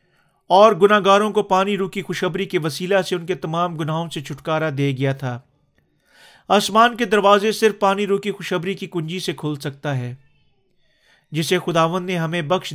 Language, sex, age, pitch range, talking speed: Urdu, male, 40-59, 150-200 Hz, 175 wpm